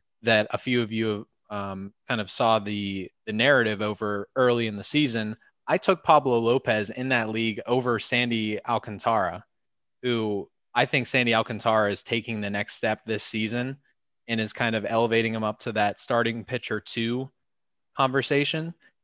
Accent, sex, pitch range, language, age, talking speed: American, male, 105-125 Hz, English, 20-39, 165 wpm